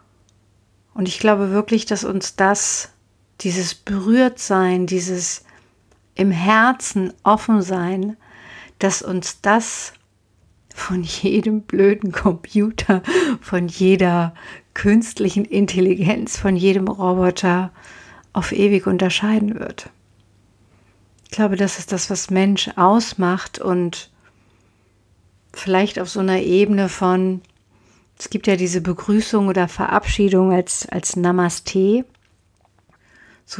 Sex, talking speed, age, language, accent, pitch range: female, 100 wpm, 50-69, German, German, 170-200 Hz